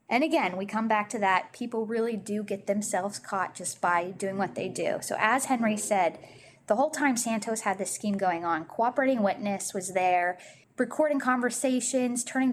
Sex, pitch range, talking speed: female, 200-255 Hz, 185 wpm